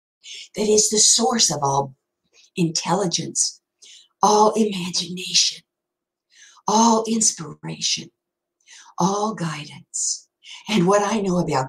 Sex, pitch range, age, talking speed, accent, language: female, 170-225 Hz, 60-79, 90 wpm, American, English